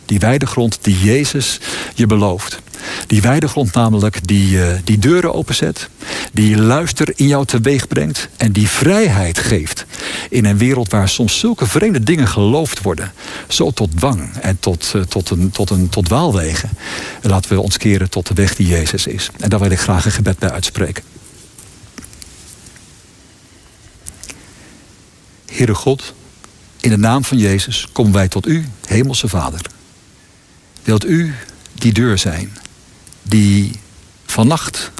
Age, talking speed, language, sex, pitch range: 60-79, 140 wpm, Dutch, male, 100-125 Hz